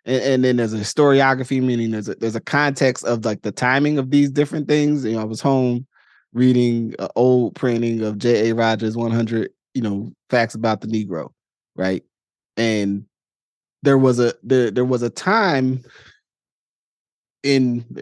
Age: 20-39